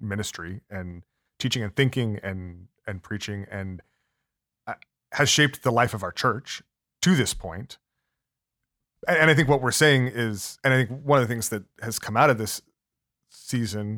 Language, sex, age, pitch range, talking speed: English, male, 30-49, 105-130 Hz, 170 wpm